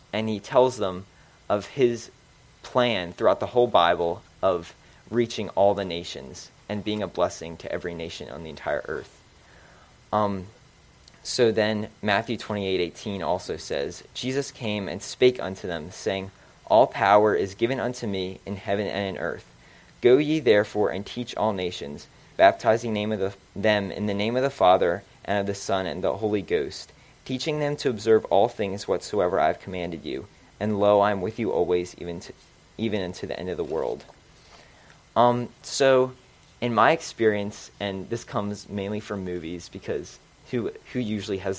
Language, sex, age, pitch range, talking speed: English, male, 20-39, 95-115 Hz, 170 wpm